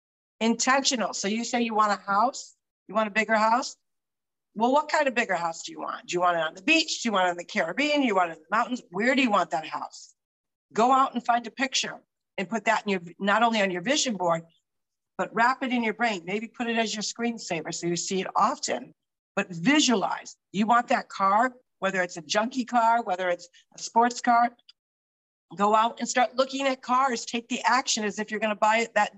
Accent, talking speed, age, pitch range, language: American, 240 wpm, 50-69, 185-245 Hz, English